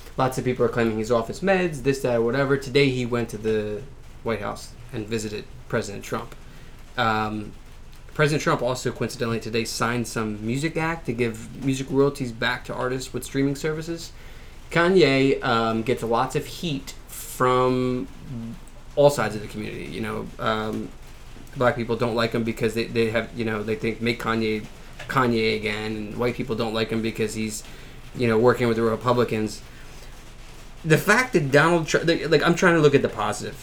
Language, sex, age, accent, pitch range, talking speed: English, male, 20-39, American, 115-145 Hz, 185 wpm